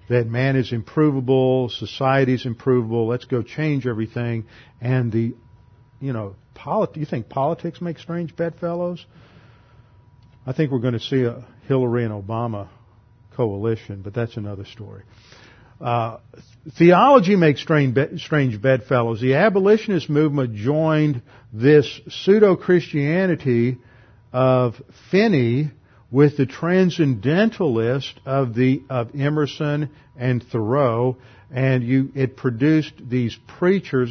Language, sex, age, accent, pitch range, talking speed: English, male, 50-69, American, 115-145 Hz, 115 wpm